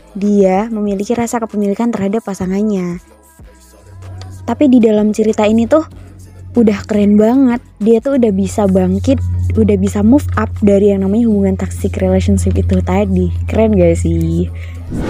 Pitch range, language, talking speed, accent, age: 175-215 Hz, Indonesian, 140 wpm, native, 20-39